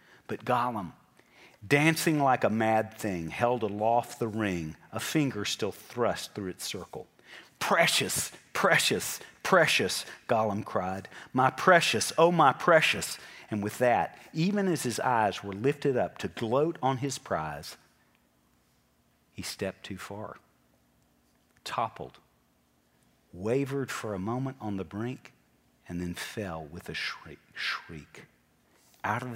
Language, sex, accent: English, male, American